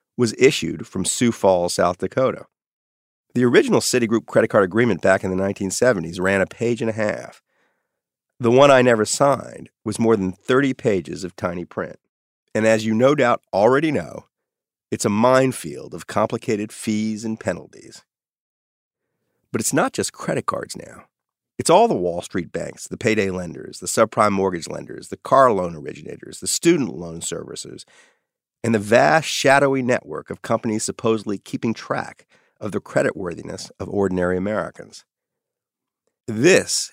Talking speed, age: 155 wpm, 40-59